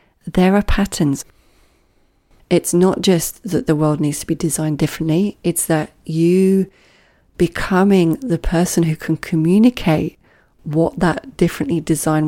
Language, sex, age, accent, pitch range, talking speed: English, female, 40-59, British, 160-180 Hz, 130 wpm